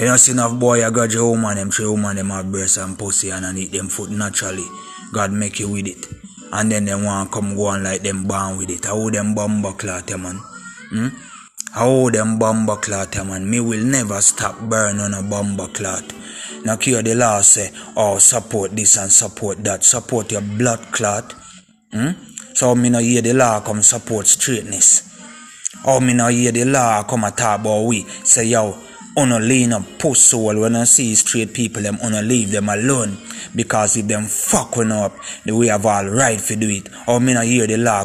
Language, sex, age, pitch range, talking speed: English, male, 20-39, 100-120 Hz, 220 wpm